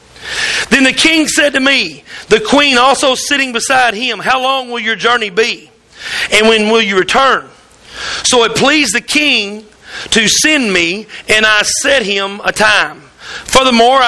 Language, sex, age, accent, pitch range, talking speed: English, male, 40-59, American, 230-295 Hz, 160 wpm